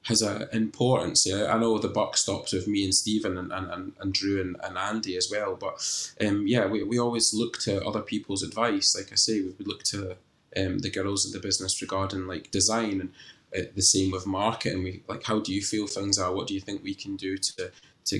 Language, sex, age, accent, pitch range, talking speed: English, male, 20-39, British, 95-105 Hz, 235 wpm